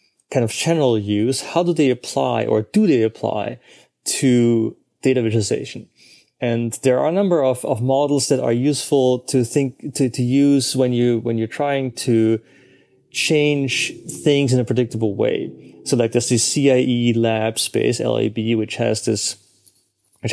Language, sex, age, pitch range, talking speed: English, male, 30-49, 110-130 Hz, 160 wpm